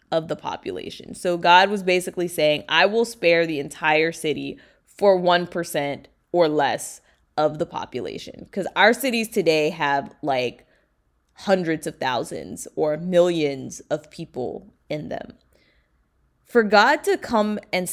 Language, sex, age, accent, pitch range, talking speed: English, female, 20-39, American, 150-180 Hz, 135 wpm